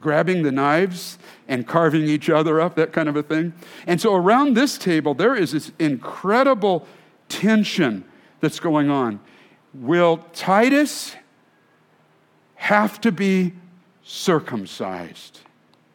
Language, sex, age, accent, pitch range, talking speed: English, male, 50-69, American, 130-205 Hz, 120 wpm